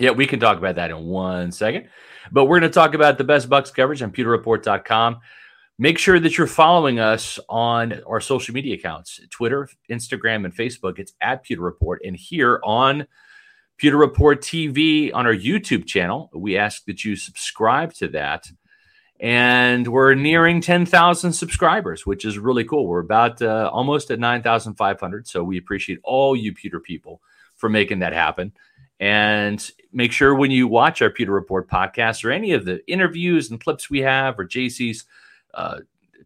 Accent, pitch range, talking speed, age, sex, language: American, 100-140 Hz, 170 wpm, 40-59, male, English